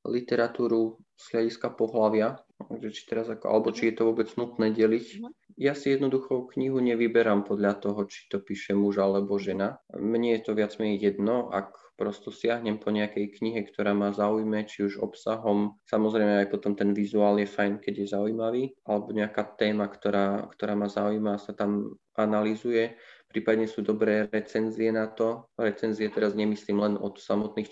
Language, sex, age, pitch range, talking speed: Slovak, male, 20-39, 105-115 Hz, 160 wpm